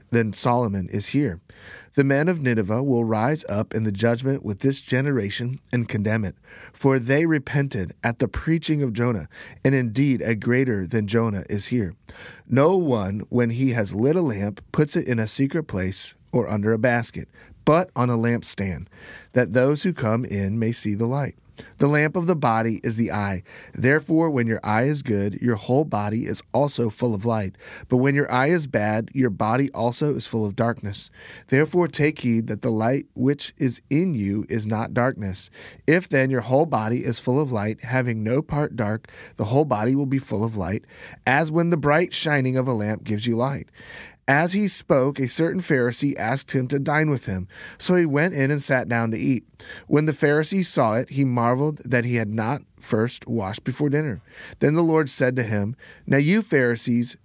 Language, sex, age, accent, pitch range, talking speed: English, male, 30-49, American, 110-140 Hz, 200 wpm